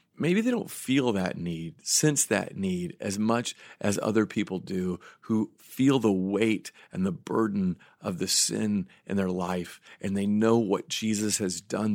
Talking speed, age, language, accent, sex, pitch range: 175 wpm, 40-59, English, American, male, 105-165 Hz